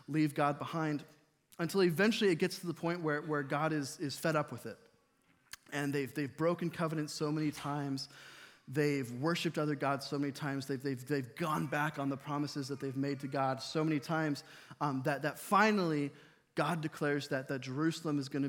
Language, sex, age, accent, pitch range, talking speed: English, male, 20-39, American, 140-170 Hz, 200 wpm